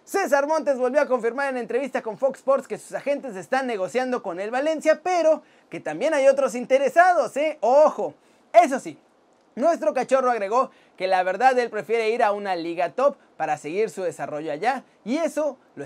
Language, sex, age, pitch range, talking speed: Spanish, male, 30-49, 235-290 Hz, 185 wpm